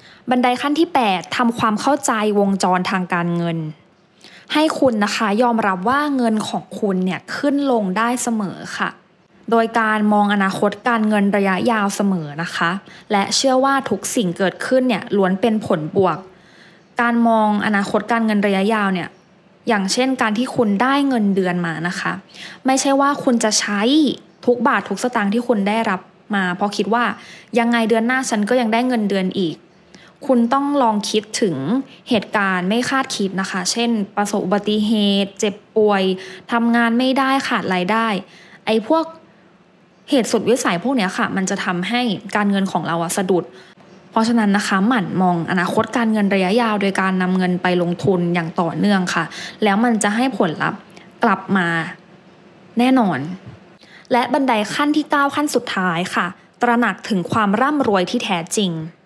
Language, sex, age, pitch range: English, female, 20-39, 185-235 Hz